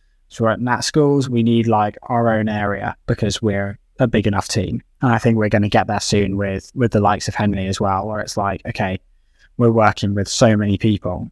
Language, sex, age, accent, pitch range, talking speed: English, male, 10-29, British, 100-115 Hz, 235 wpm